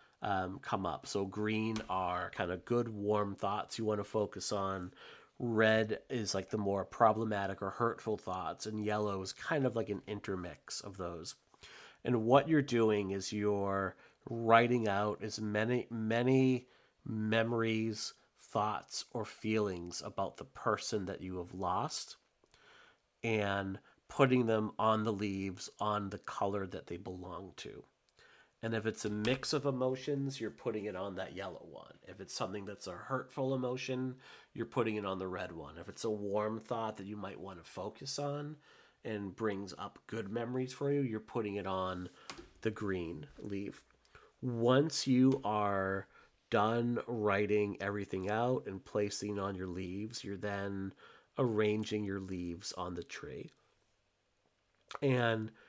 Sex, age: male, 30-49